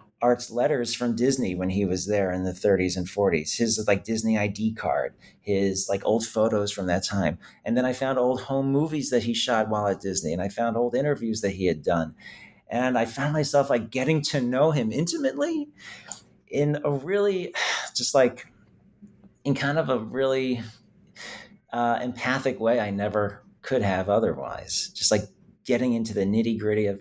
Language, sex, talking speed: English, male, 185 wpm